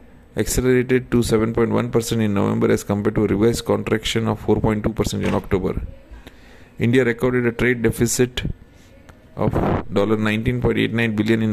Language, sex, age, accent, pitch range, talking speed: English, male, 30-49, Indian, 105-120 Hz, 125 wpm